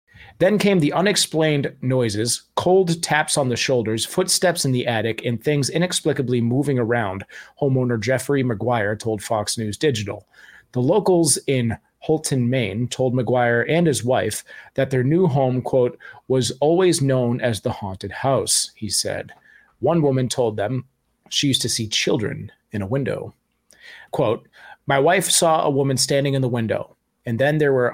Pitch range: 110-140 Hz